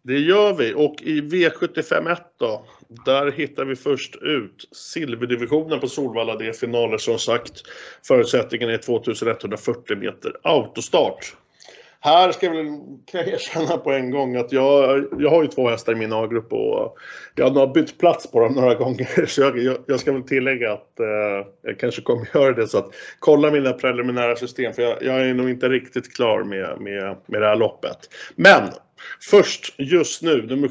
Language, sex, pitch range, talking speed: Swedish, male, 115-150 Hz, 180 wpm